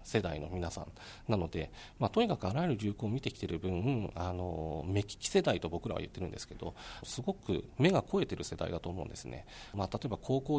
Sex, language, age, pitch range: male, Japanese, 40-59, 90-130 Hz